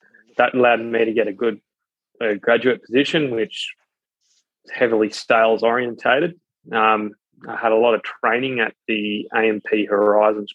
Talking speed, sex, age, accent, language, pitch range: 150 wpm, male, 20-39, Australian, English, 105-120 Hz